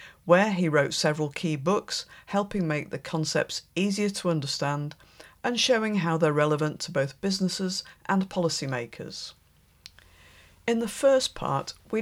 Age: 50-69